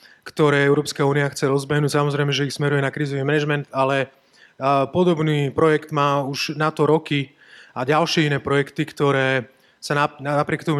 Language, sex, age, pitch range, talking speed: Slovak, male, 30-49, 140-170 Hz, 155 wpm